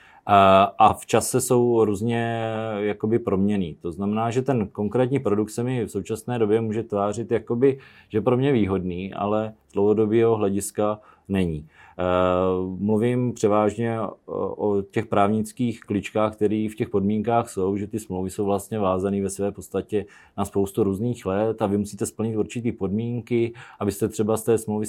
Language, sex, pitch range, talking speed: Czech, male, 100-115 Hz, 155 wpm